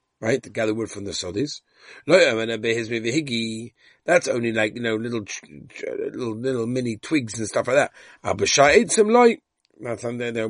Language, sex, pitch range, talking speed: English, male, 115-175 Hz, 130 wpm